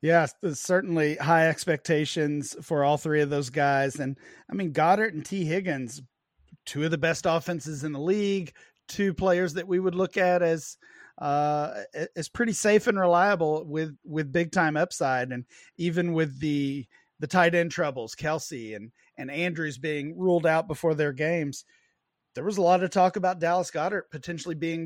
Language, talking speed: English, 180 wpm